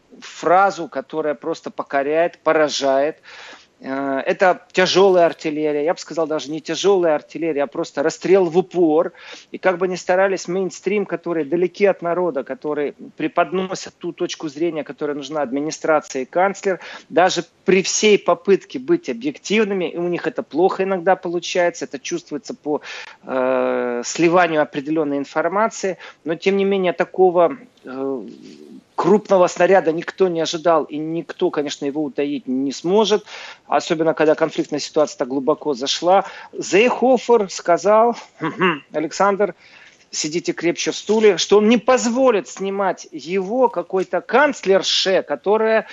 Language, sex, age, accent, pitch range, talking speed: Russian, male, 40-59, native, 155-195 Hz, 130 wpm